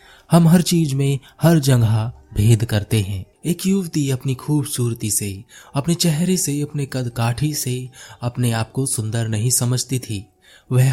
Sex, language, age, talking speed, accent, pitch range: male, Hindi, 20-39, 160 wpm, native, 115-150 Hz